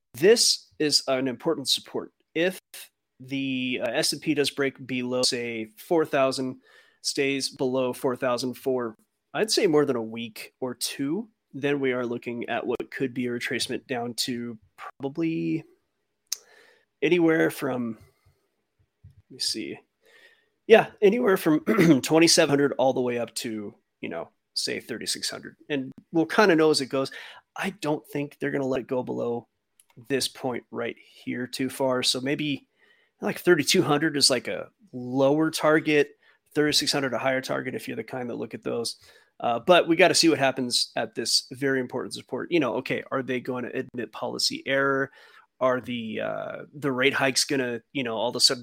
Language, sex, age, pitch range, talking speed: English, male, 30-49, 125-155 Hz, 170 wpm